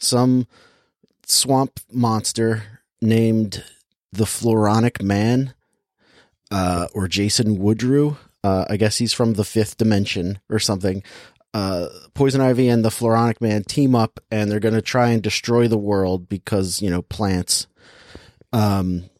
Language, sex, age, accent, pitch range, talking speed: English, male, 30-49, American, 100-125 Hz, 140 wpm